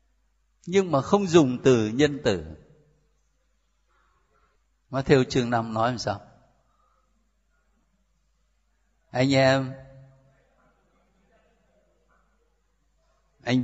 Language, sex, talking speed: Vietnamese, male, 75 wpm